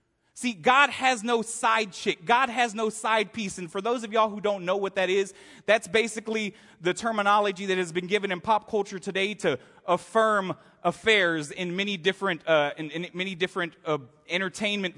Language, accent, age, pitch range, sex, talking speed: English, American, 30-49, 180-230 Hz, male, 190 wpm